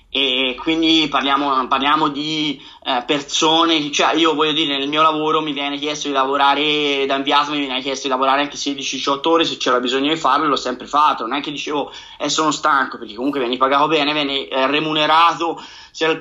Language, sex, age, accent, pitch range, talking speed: Italian, male, 20-39, native, 140-160 Hz, 200 wpm